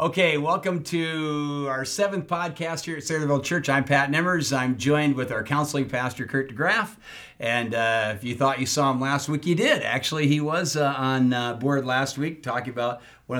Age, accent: 50-69, American